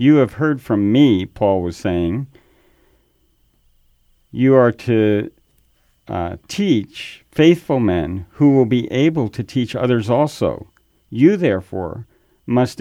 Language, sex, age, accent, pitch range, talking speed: English, male, 50-69, American, 110-140 Hz, 120 wpm